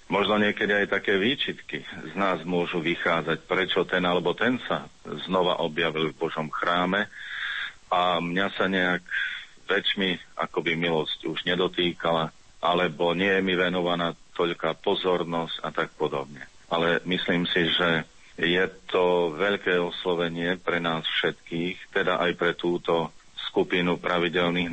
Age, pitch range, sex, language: 40-59, 85-90 Hz, male, Slovak